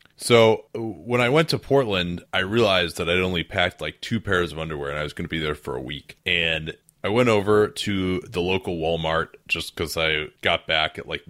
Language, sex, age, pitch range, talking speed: English, male, 30-49, 85-105 Hz, 225 wpm